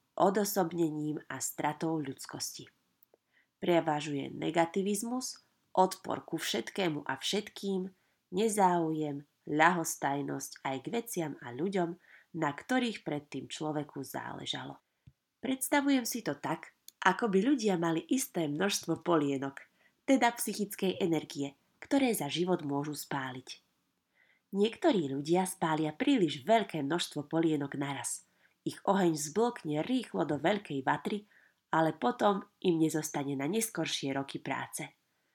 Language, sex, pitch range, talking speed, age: Slovak, female, 150-200 Hz, 110 wpm, 30-49